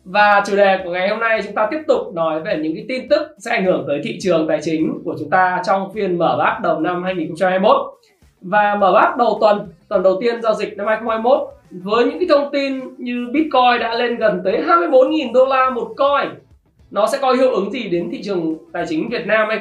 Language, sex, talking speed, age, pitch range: Vietnamese, male, 235 wpm, 20-39, 170-230 Hz